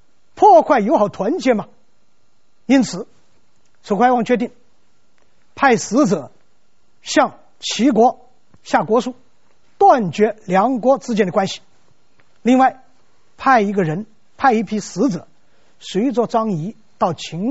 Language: Chinese